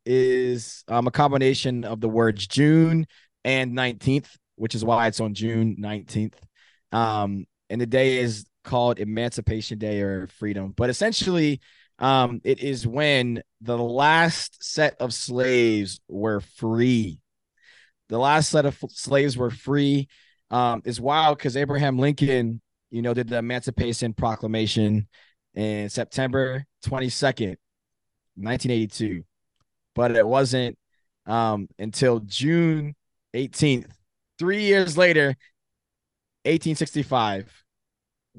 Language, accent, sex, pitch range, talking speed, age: English, American, male, 110-130 Hz, 115 wpm, 20-39